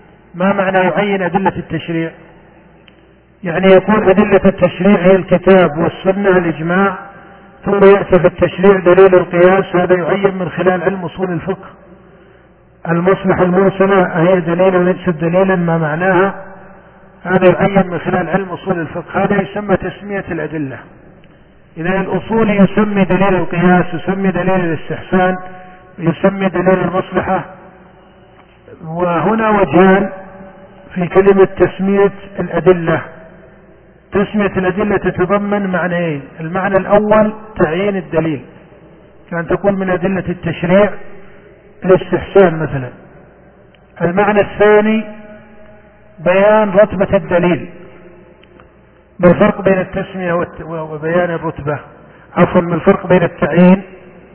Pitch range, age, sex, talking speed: 175-195 Hz, 50-69, male, 105 wpm